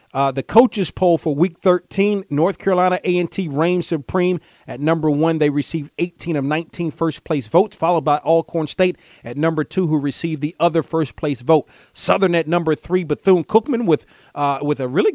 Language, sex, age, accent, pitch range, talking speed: English, male, 40-59, American, 145-175 Hz, 180 wpm